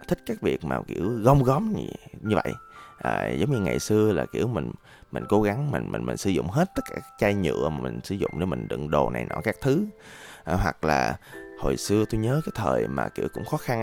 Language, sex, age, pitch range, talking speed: Vietnamese, male, 20-39, 80-125 Hz, 245 wpm